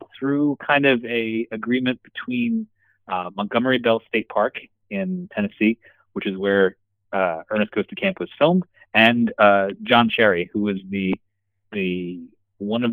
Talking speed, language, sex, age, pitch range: 155 wpm, English, male, 30-49, 100-120 Hz